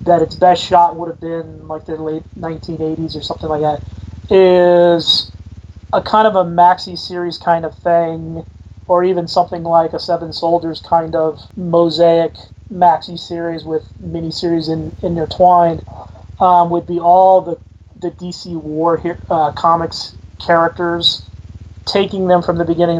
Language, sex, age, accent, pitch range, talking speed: English, male, 30-49, American, 160-175 Hz, 145 wpm